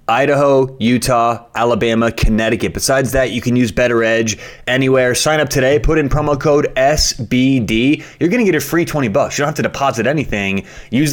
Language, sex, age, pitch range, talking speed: English, male, 30-49, 110-135 Hz, 190 wpm